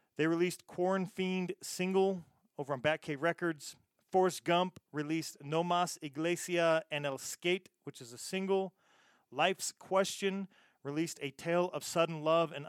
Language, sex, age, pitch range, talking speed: English, male, 40-59, 140-175 Hz, 145 wpm